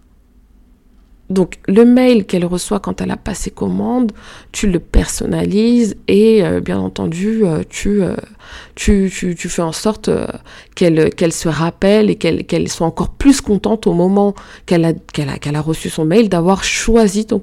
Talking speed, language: 180 wpm, French